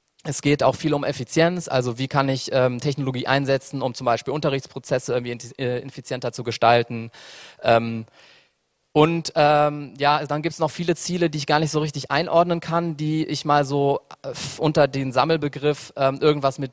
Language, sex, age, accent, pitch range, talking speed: English, male, 20-39, German, 130-160 Hz, 180 wpm